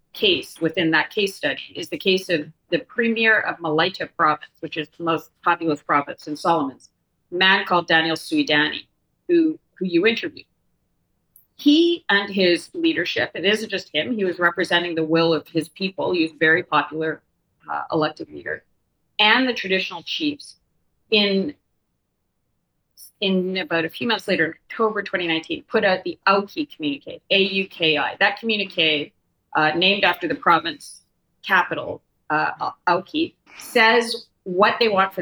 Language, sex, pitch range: English, female, 160-205 Hz